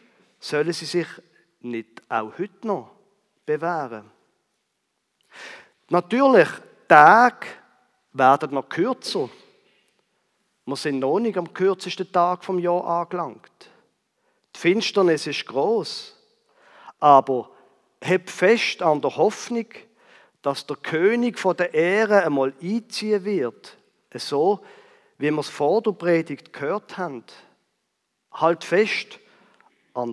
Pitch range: 145-215 Hz